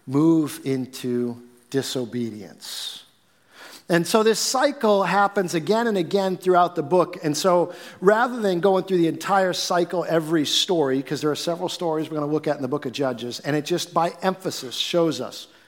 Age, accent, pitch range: 50-69, American, 145-200 Hz